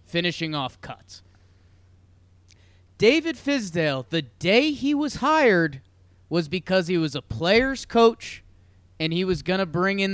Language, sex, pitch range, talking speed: English, male, 130-195 Hz, 135 wpm